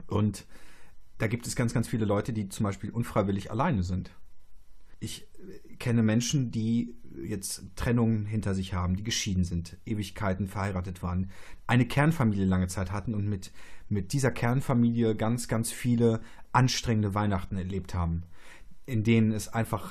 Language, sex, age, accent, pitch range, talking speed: German, male, 30-49, German, 95-115 Hz, 150 wpm